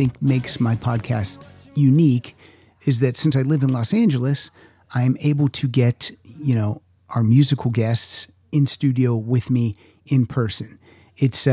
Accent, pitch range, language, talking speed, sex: American, 105-140 Hz, English, 145 wpm, male